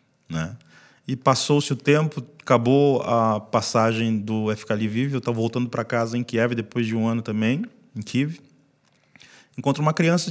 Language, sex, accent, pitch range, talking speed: Portuguese, male, Brazilian, 110-140 Hz, 165 wpm